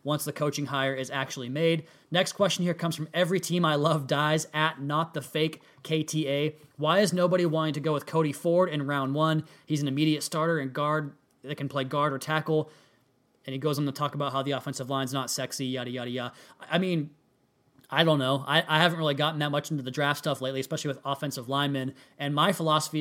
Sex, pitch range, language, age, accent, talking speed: male, 140-160 Hz, English, 20-39, American, 225 wpm